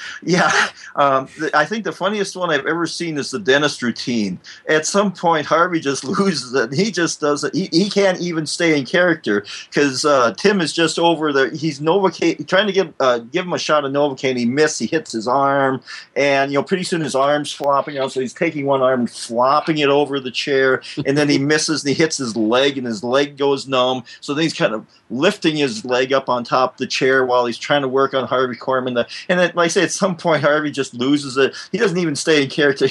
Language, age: English, 40-59